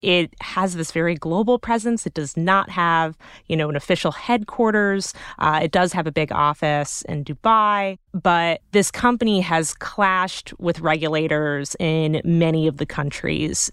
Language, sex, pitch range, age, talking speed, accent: English, female, 155-195 Hz, 30-49, 155 wpm, American